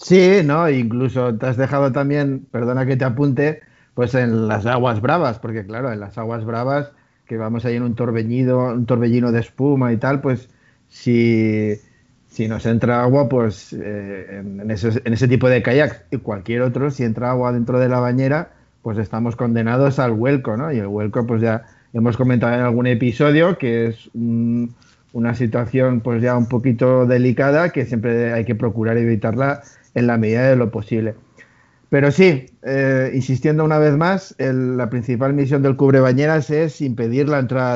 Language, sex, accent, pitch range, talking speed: Spanish, male, Spanish, 115-135 Hz, 180 wpm